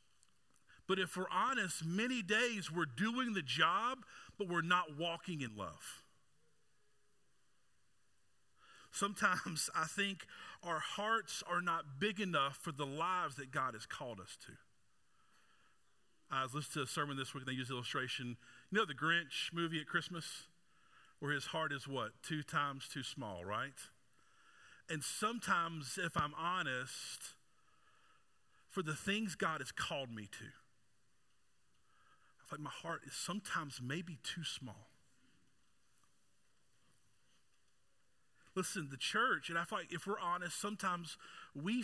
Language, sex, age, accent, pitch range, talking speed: English, male, 40-59, American, 145-200 Hz, 140 wpm